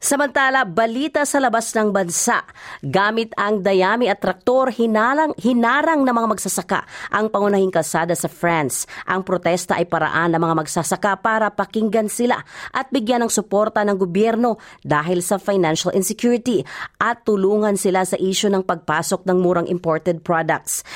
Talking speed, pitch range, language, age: 150 wpm, 140-210 Hz, Filipino, 40-59